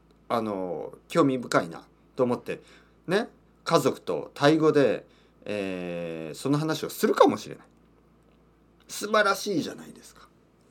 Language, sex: Japanese, male